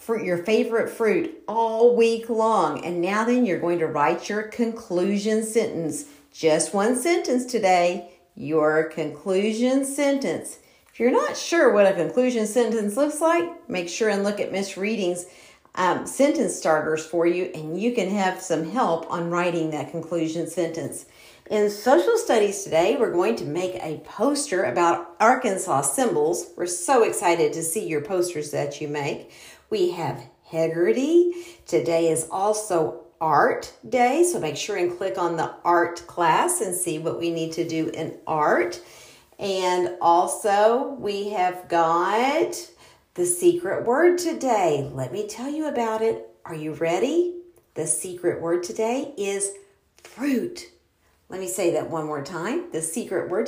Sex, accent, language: female, American, English